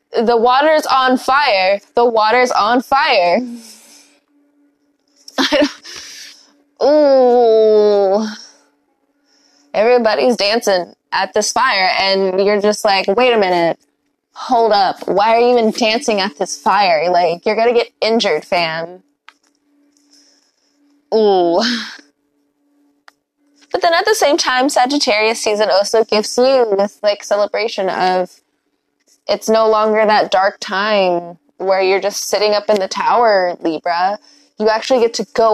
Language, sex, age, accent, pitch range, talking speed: English, female, 10-29, American, 190-250 Hz, 125 wpm